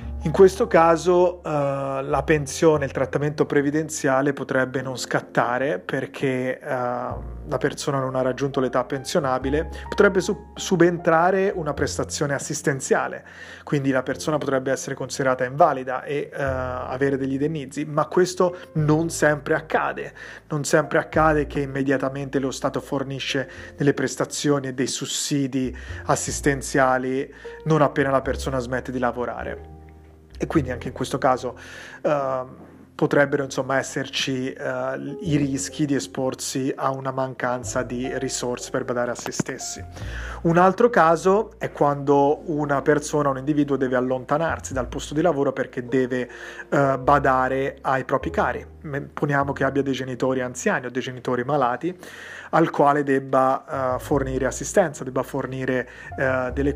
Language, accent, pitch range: Italian, native, 130-150 Hz